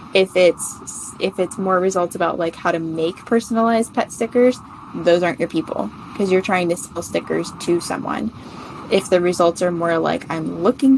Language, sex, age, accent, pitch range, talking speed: English, female, 10-29, American, 170-195 Hz, 185 wpm